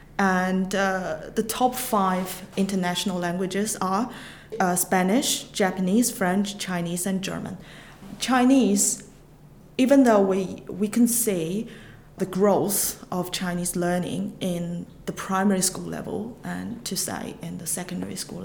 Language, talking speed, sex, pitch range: English, 125 wpm, female, 175-205 Hz